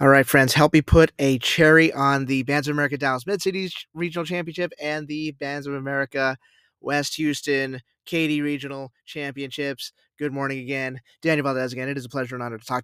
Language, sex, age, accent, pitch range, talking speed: English, male, 20-39, American, 130-150 Hz, 190 wpm